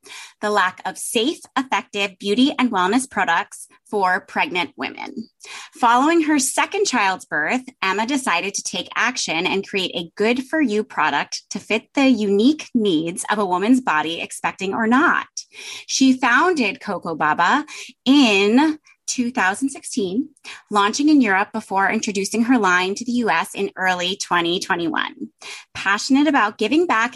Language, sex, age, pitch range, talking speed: English, female, 20-39, 195-255 Hz, 135 wpm